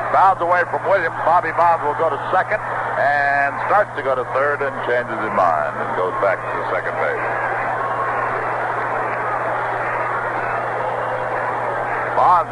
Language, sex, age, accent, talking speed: English, male, 60-79, American, 135 wpm